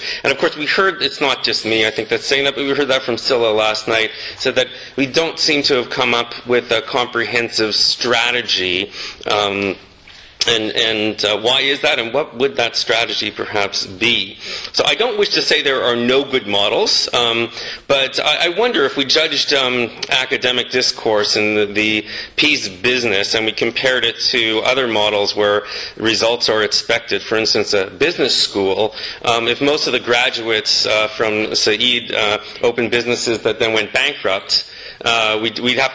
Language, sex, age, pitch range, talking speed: English, male, 40-59, 105-130 Hz, 185 wpm